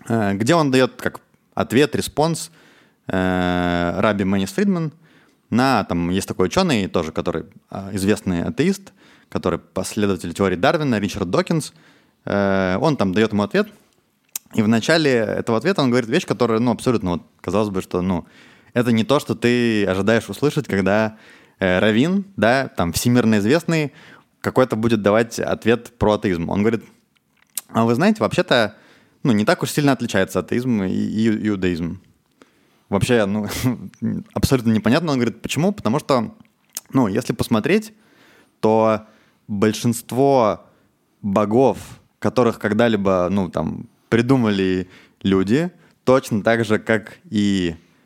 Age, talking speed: 20-39, 135 wpm